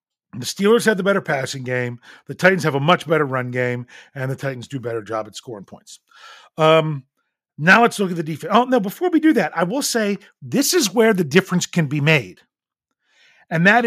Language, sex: English, male